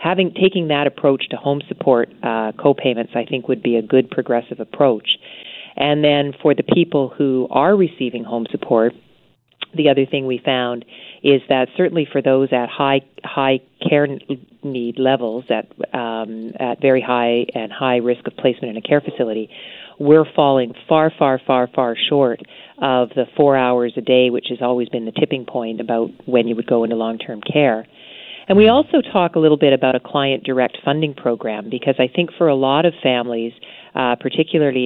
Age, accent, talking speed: 40-59, American, 185 wpm